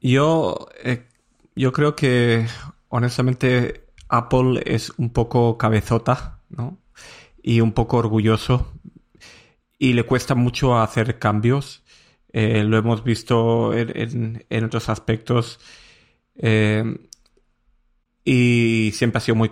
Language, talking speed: Spanish, 115 wpm